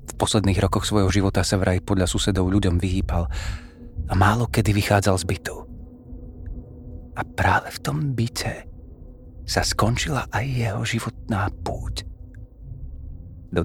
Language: Slovak